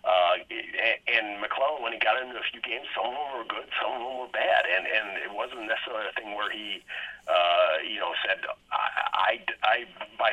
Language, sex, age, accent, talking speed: English, male, 40-59, American, 215 wpm